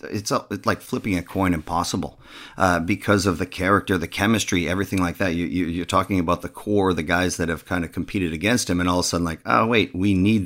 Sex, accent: male, American